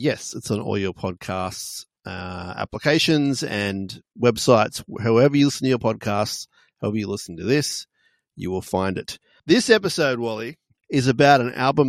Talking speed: 160 wpm